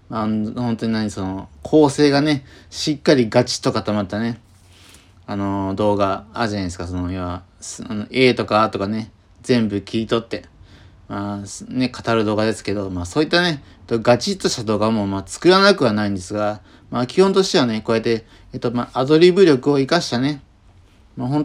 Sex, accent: male, native